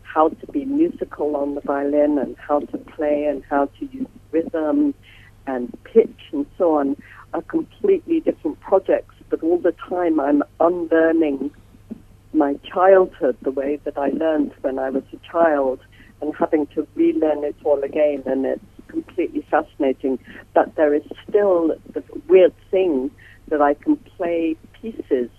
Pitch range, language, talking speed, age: 135-175 Hz, English, 155 wpm, 60-79